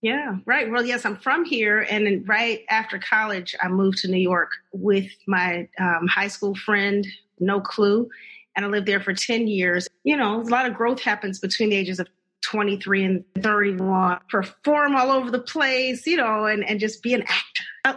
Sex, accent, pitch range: female, American, 195-235 Hz